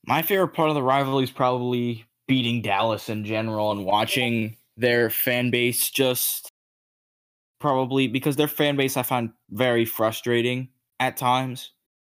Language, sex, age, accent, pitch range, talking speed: English, male, 10-29, American, 110-125 Hz, 145 wpm